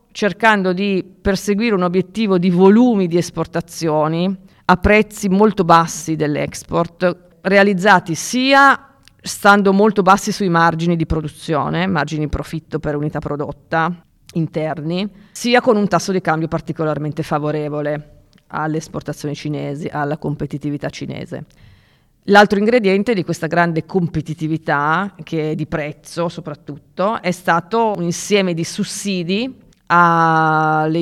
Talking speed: 120 wpm